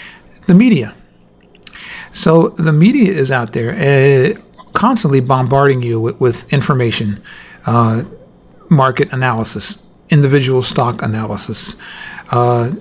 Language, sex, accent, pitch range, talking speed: English, male, American, 125-155 Hz, 105 wpm